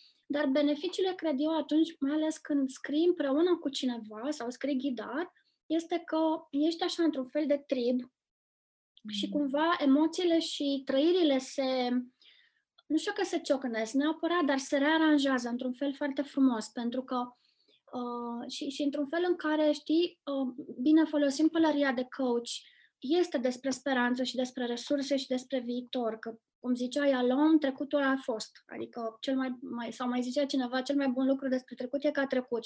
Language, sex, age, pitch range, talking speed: Romanian, female, 20-39, 255-305 Hz, 170 wpm